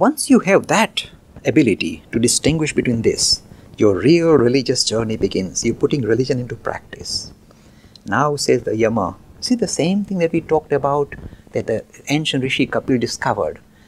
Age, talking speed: 50-69, 160 wpm